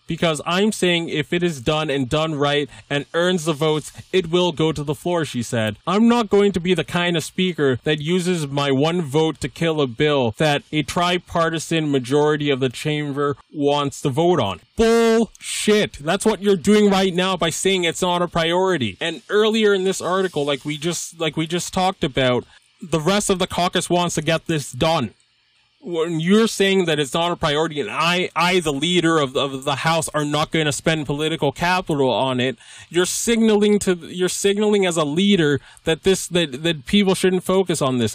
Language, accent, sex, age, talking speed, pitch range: English, American, male, 20-39, 205 wpm, 145-185 Hz